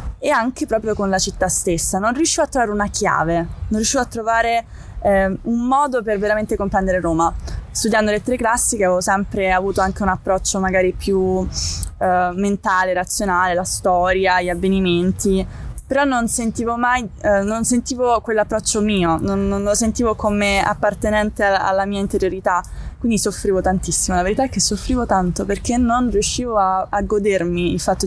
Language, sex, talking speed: Italian, female, 165 wpm